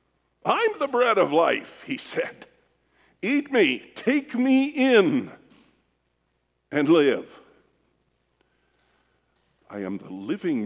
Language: English